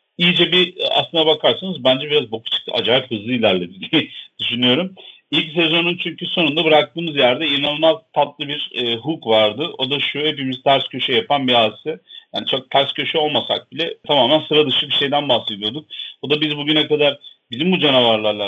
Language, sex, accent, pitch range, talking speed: Turkish, male, native, 125-165 Hz, 170 wpm